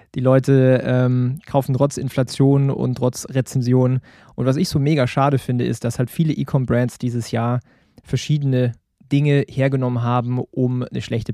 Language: German